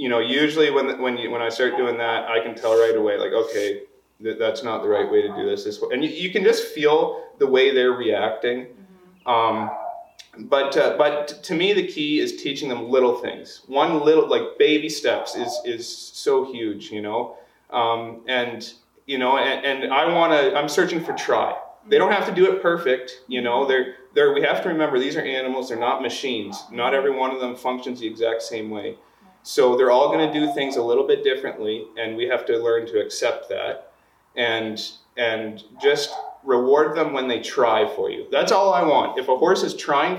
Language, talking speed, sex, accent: English, 215 wpm, male, American